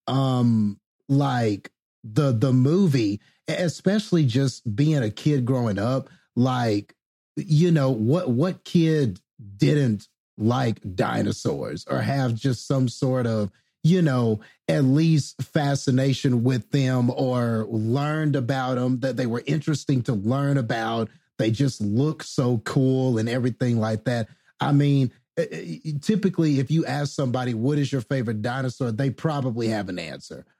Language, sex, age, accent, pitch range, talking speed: English, male, 30-49, American, 115-150 Hz, 140 wpm